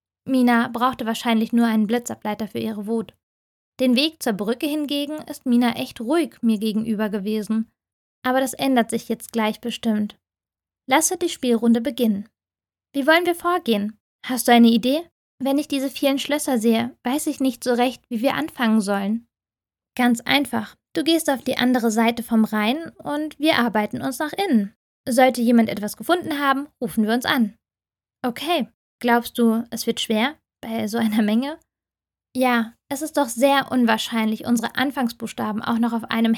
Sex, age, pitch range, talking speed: female, 20-39, 225-270 Hz, 170 wpm